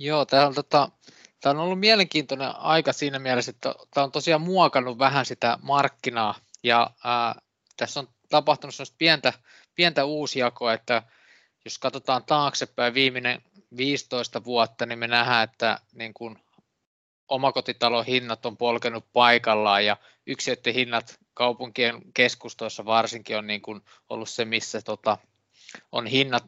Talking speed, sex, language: 130 wpm, male, Finnish